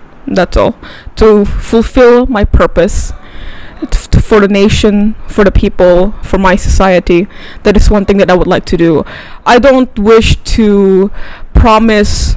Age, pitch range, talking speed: 10-29, 190-225 Hz, 145 wpm